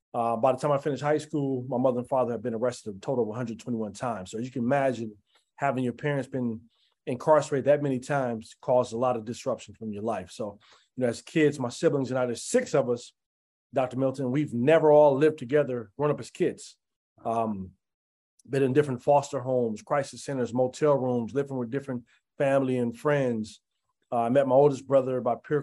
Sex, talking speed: male, 210 wpm